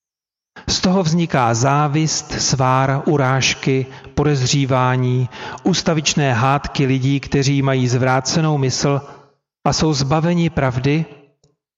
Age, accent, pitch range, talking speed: 40-59, native, 130-160 Hz, 90 wpm